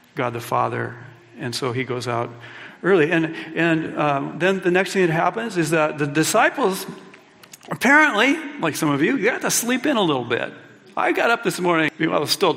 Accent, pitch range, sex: American, 140-180 Hz, male